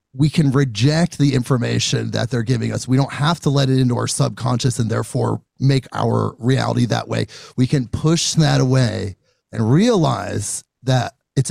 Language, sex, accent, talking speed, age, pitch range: English, male, American, 175 wpm, 30-49, 125-160 Hz